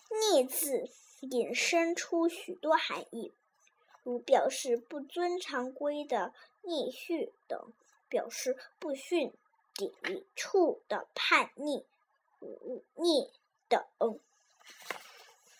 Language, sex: Chinese, male